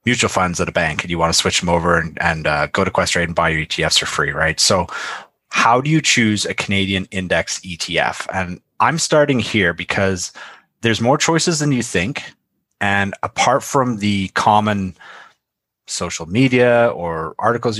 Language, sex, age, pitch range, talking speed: English, male, 30-49, 95-120 Hz, 180 wpm